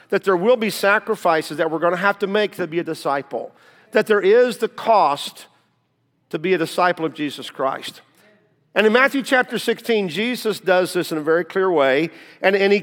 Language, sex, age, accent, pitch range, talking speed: English, male, 50-69, American, 165-220 Hz, 205 wpm